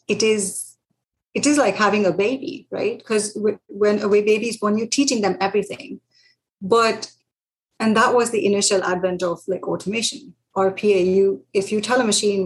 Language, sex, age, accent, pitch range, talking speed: English, female, 30-49, Indian, 175-200 Hz, 175 wpm